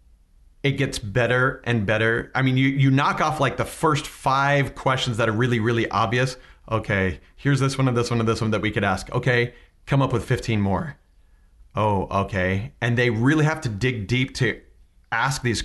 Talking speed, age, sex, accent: 205 wpm, 30-49, male, American